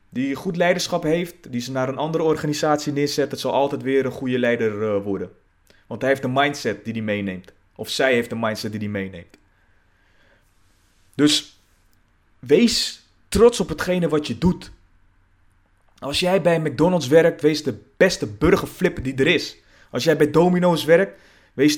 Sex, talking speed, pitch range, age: male, 170 wpm, 105-165 Hz, 30-49